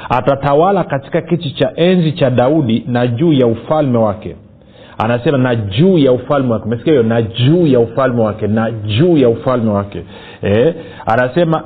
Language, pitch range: Swahili, 115-155 Hz